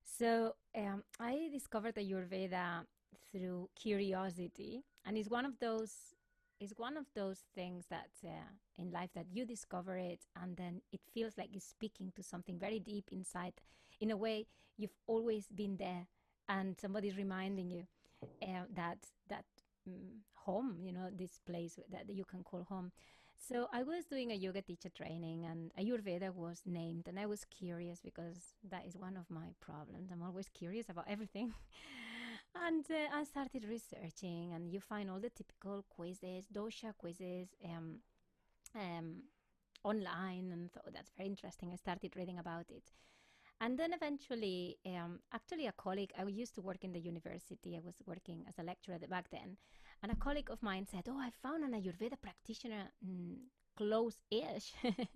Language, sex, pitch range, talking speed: English, female, 180-225 Hz, 170 wpm